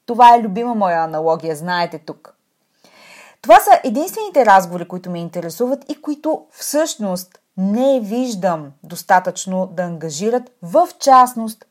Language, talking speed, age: Bulgarian, 125 wpm, 30-49